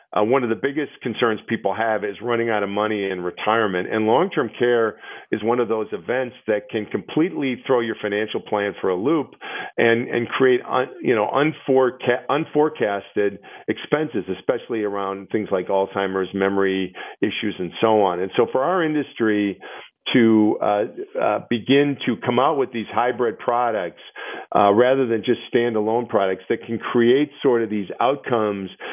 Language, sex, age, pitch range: English, male, 50-69, 105-125 Hz